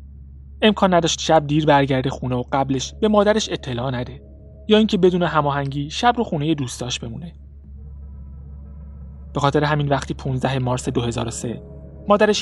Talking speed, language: 140 wpm, Persian